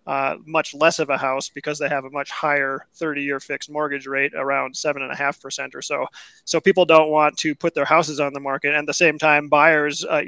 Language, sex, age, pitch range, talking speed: English, male, 20-39, 140-160 Hz, 245 wpm